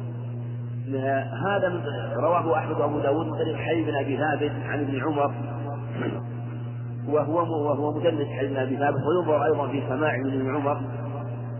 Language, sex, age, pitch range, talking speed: Arabic, male, 40-59, 120-150 Hz, 135 wpm